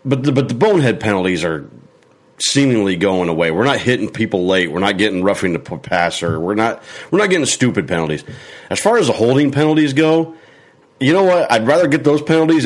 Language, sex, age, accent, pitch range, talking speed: English, male, 40-59, American, 95-145 Hz, 205 wpm